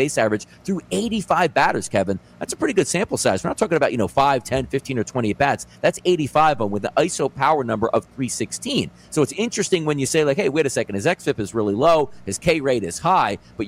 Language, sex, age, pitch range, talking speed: English, male, 40-59, 125-175 Hz, 250 wpm